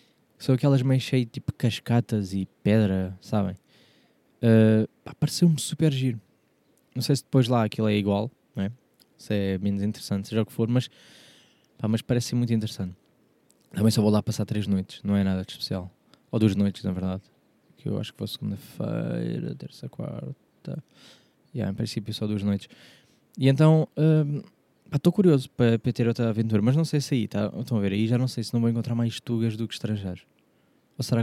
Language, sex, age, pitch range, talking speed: Portuguese, male, 20-39, 100-125 Hz, 195 wpm